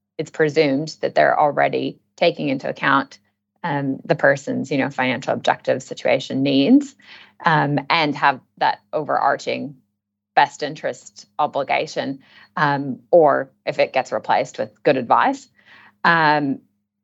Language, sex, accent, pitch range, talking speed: English, female, American, 130-165 Hz, 125 wpm